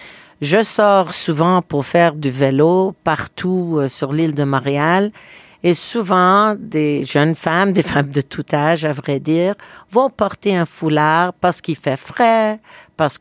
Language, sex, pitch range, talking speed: English, female, 150-185 Hz, 160 wpm